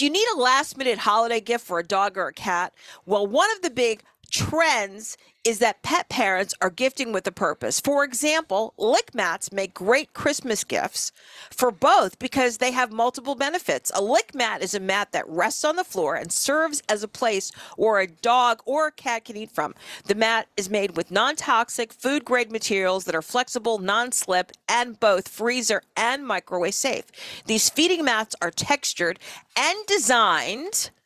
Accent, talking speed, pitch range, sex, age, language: American, 180 wpm, 205-275 Hz, female, 50-69, English